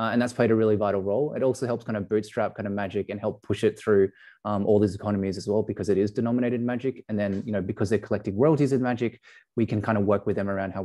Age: 20-39